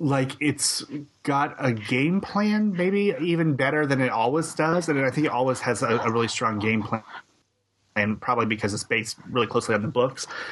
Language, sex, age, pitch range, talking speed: English, male, 30-49, 115-135 Hz, 200 wpm